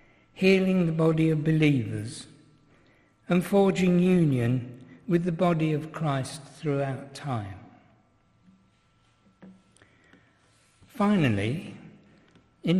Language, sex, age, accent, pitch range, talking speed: English, male, 60-79, British, 125-165 Hz, 80 wpm